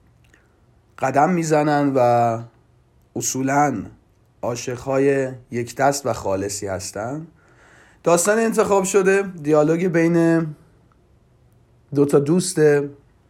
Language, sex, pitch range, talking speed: Persian, male, 105-145 Hz, 75 wpm